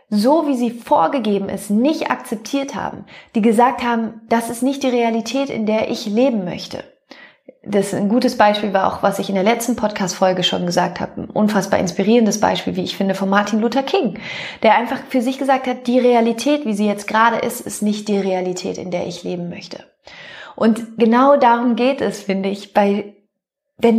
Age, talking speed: 30-49, 200 wpm